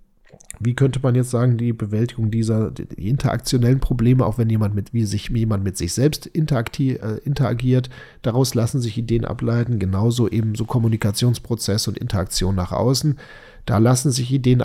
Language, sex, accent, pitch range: German, male, German, 110-135 Hz